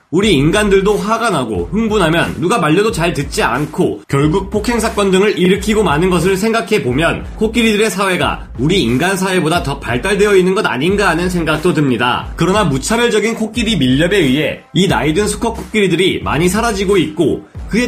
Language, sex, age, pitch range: Korean, male, 30-49, 160-215 Hz